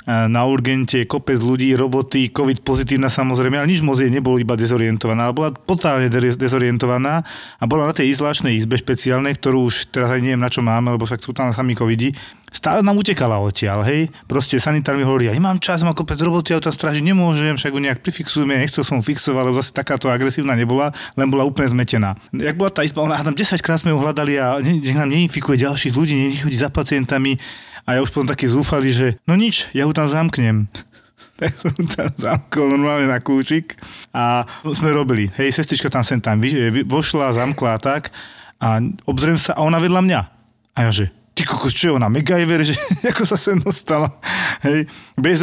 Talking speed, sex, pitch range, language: 195 wpm, male, 130-160 Hz, Slovak